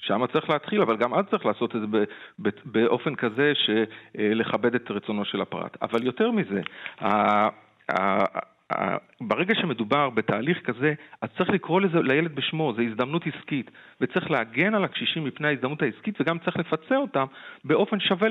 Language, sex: Hebrew, male